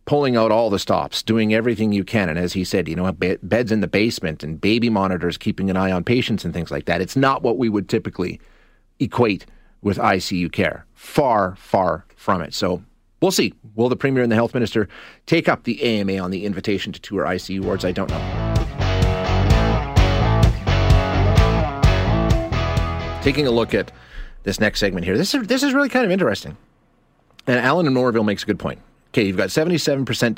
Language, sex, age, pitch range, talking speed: English, male, 30-49, 95-120 Hz, 195 wpm